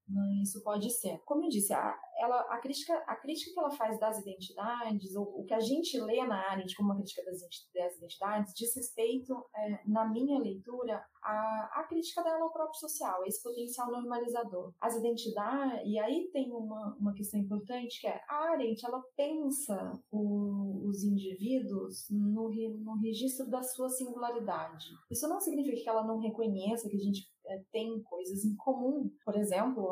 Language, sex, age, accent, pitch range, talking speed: Portuguese, female, 20-39, Brazilian, 200-255 Hz, 180 wpm